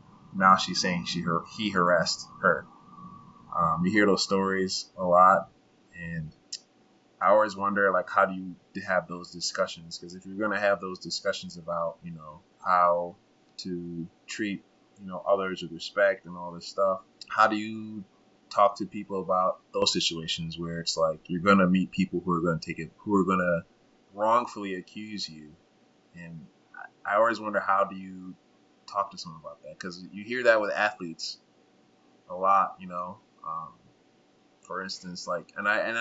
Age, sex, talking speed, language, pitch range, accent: 20-39, male, 170 wpm, English, 85-100 Hz, American